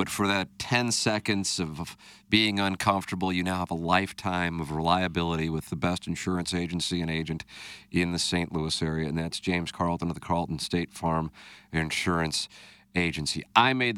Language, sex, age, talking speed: English, male, 40-59, 170 wpm